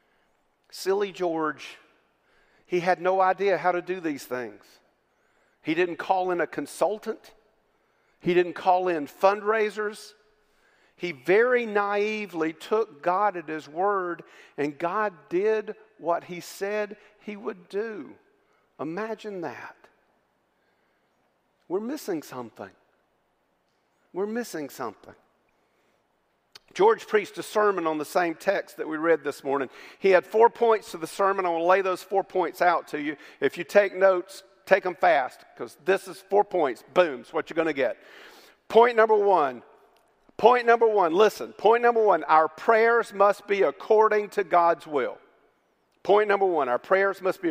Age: 50-69